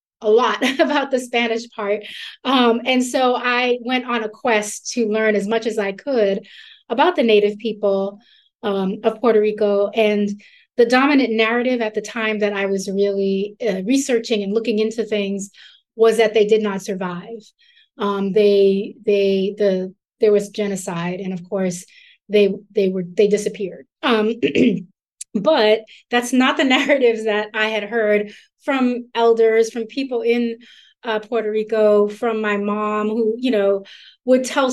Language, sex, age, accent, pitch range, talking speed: English, female, 30-49, American, 205-240 Hz, 160 wpm